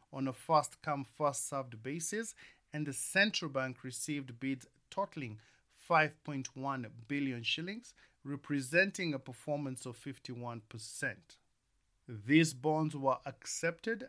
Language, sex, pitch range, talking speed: English, male, 125-155 Hz, 100 wpm